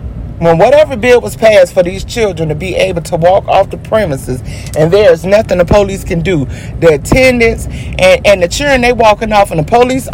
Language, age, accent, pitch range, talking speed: English, 30-49, American, 165-240 Hz, 215 wpm